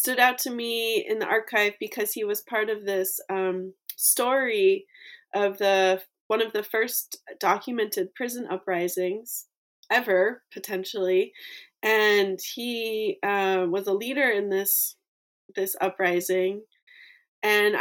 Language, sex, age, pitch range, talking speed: English, female, 20-39, 195-280 Hz, 125 wpm